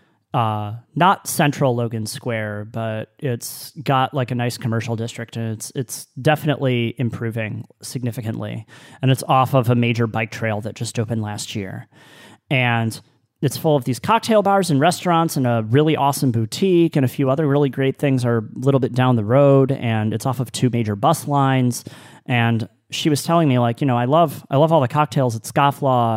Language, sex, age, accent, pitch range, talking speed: English, male, 30-49, American, 115-155 Hz, 195 wpm